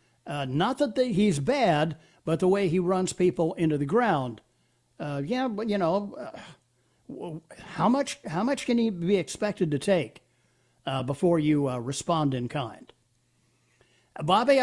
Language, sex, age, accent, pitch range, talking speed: English, male, 60-79, American, 150-215 Hz, 160 wpm